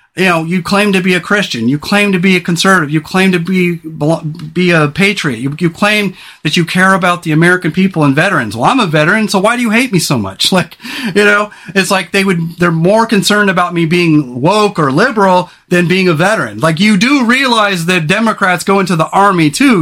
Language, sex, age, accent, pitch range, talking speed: English, male, 40-59, American, 165-205 Hz, 230 wpm